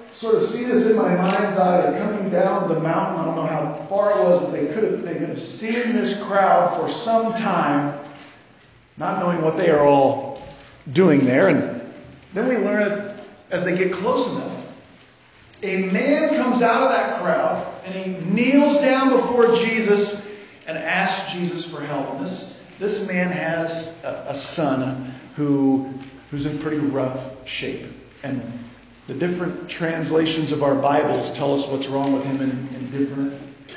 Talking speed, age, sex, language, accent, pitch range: 175 wpm, 50-69, male, English, American, 150-205 Hz